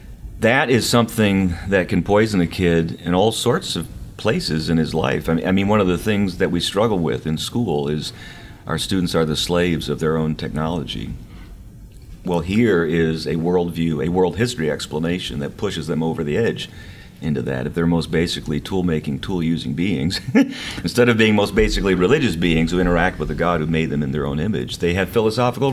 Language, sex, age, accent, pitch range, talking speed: English, male, 40-59, American, 80-100 Hz, 195 wpm